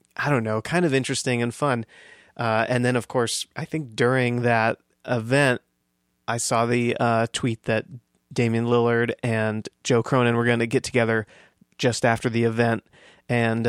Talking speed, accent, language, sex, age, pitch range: 170 wpm, American, English, male, 30-49, 115-125 Hz